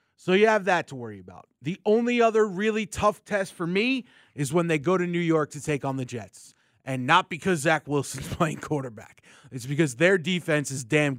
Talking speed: 215 wpm